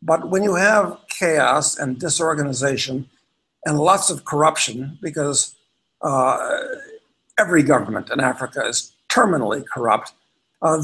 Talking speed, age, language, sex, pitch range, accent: 115 wpm, 60-79, English, male, 155-200 Hz, American